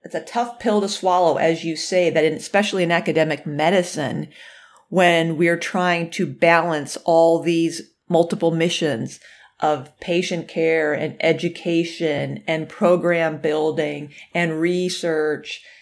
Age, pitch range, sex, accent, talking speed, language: 40-59, 160-195 Hz, female, American, 125 wpm, English